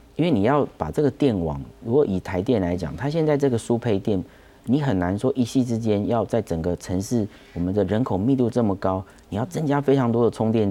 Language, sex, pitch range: Chinese, male, 85-115 Hz